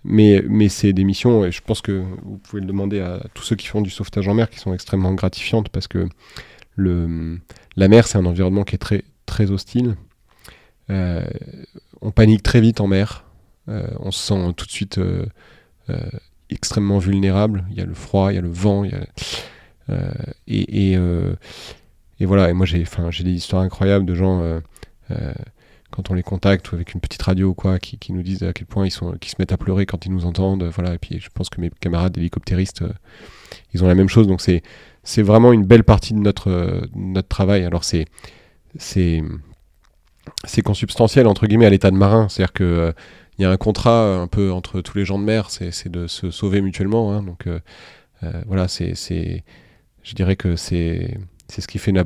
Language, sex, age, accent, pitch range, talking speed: French, male, 30-49, French, 90-105 Hz, 220 wpm